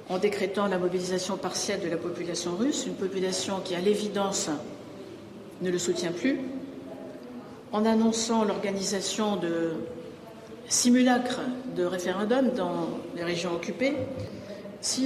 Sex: female